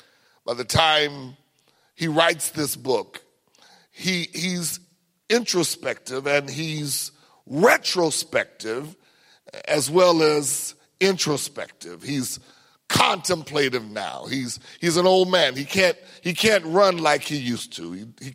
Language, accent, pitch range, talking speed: English, American, 135-205 Hz, 120 wpm